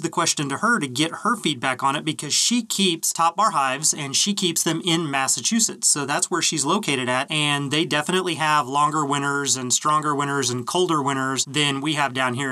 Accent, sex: American, male